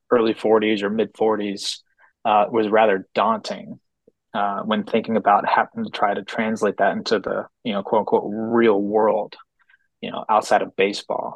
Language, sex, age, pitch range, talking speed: English, male, 20-39, 105-120 Hz, 170 wpm